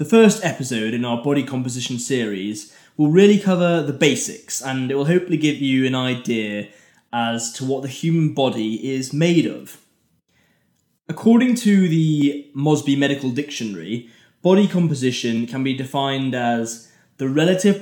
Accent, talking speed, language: British, 150 wpm, English